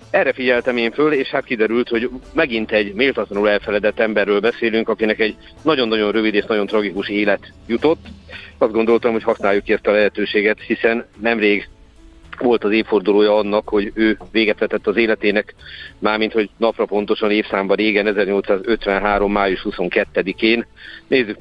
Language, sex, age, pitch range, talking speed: Hungarian, male, 50-69, 105-115 Hz, 150 wpm